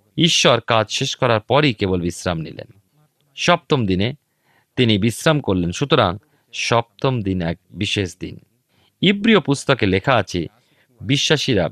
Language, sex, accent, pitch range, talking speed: Bengali, male, native, 95-145 Hz, 125 wpm